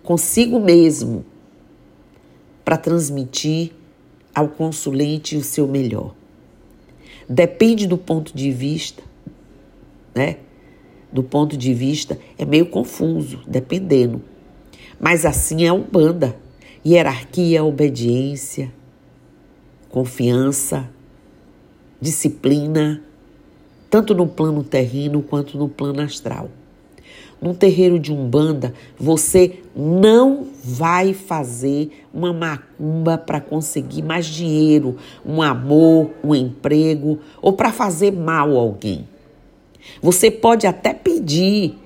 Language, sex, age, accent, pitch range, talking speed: Portuguese, female, 50-69, Brazilian, 135-170 Hz, 95 wpm